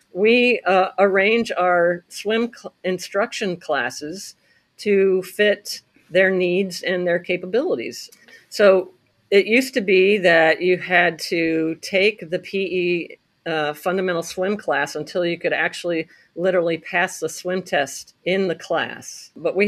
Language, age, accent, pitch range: English, 50-69, American, 170-205 Hz